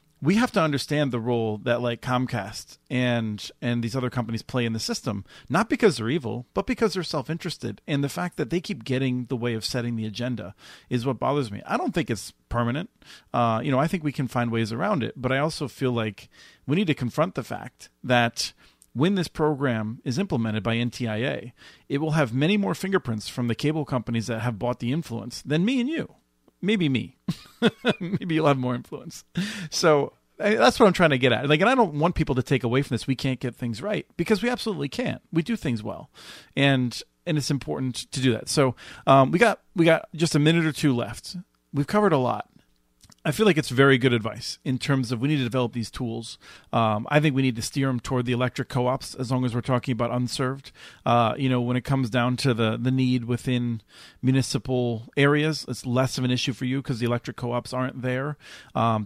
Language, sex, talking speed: English, male, 230 wpm